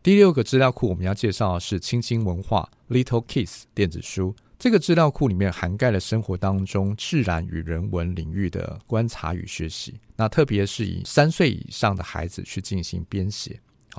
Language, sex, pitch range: Chinese, male, 95-125 Hz